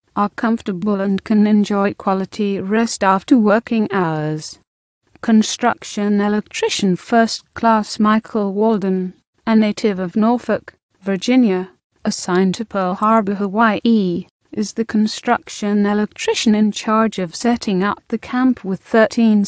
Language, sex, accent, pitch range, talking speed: English, female, British, 195-225 Hz, 120 wpm